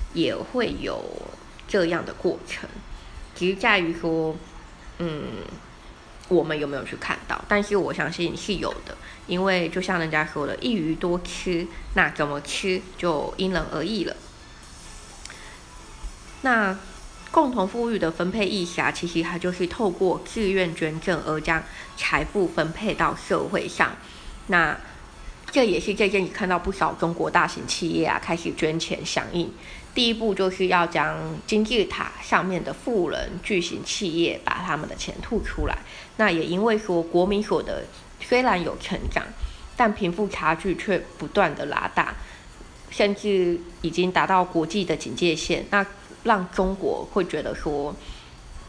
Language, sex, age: Chinese, female, 20-39